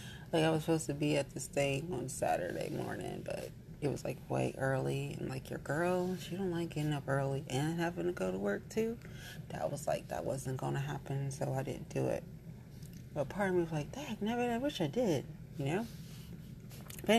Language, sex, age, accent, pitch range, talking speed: English, female, 30-49, American, 145-180 Hz, 215 wpm